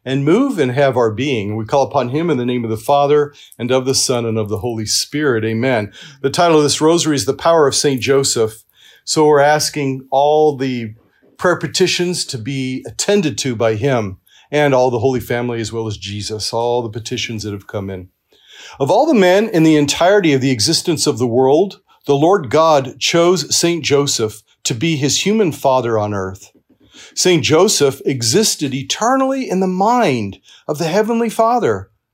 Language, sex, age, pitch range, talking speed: English, male, 50-69, 120-160 Hz, 190 wpm